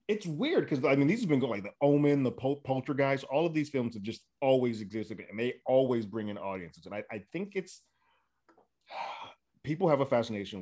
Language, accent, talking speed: English, American, 210 wpm